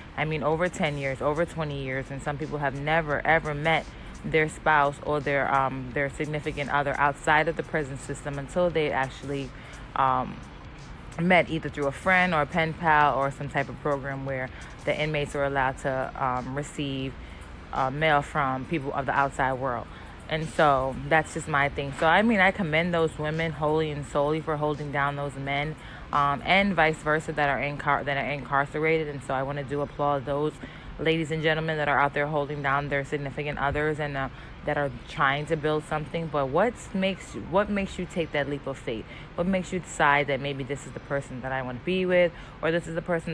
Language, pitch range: English, 140-155 Hz